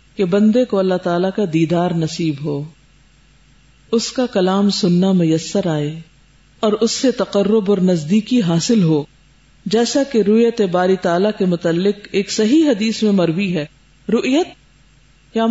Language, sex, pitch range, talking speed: Urdu, female, 165-225 Hz, 145 wpm